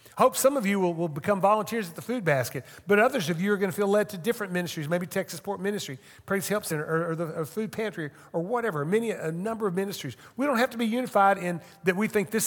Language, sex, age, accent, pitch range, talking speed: English, male, 50-69, American, 130-200 Hz, 265 wpm